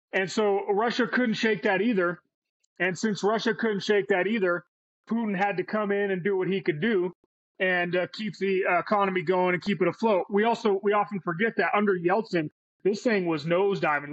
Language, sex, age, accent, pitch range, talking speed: English, male, 30-49, American, 175-205 Hz, 205 wpm